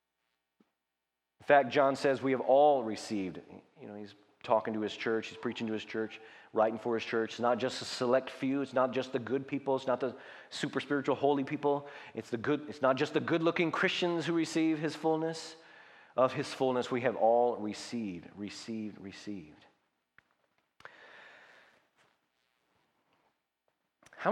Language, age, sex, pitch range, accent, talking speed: English, 30-49, male, 110-155 Hz, American, 165 wpm